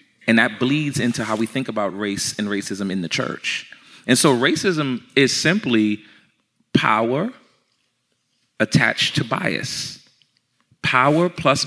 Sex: male